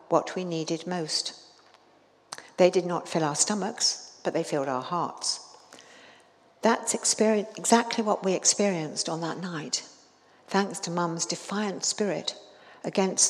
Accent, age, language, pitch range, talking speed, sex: British, 60-79, English, 160-200 Hz, 130 wpm, female